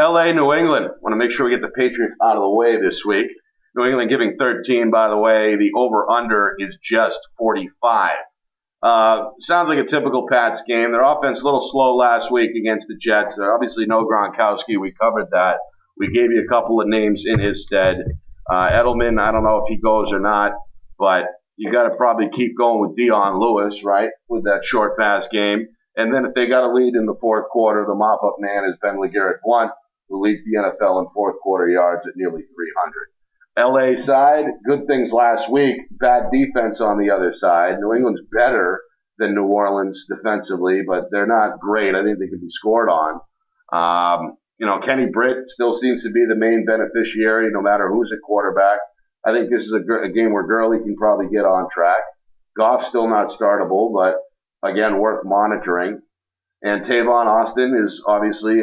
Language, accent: English, American